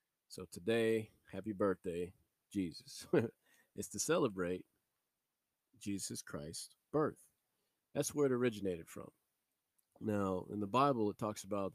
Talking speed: 115 wpm